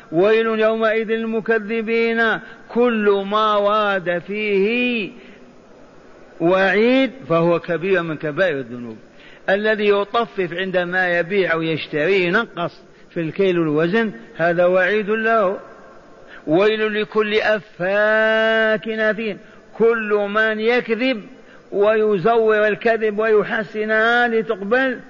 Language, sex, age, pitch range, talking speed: Arabic, male, 50-69, 170-220 Hz, 85 wpm